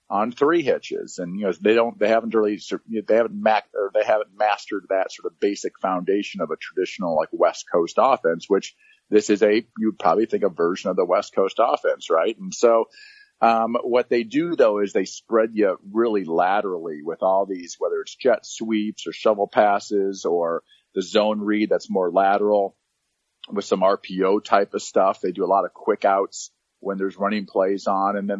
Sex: male